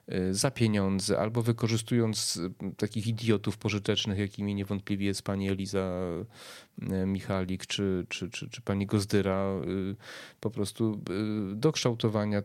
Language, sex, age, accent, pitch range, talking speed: Polish, male, 30-49, native, 95-115 Hz, 110 wpm